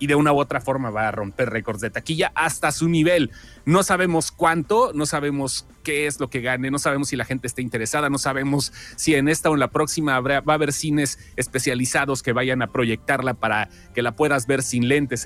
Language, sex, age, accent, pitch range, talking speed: Spanish, male, 30-49, Mexican, 125-155 Hz, 225 wpm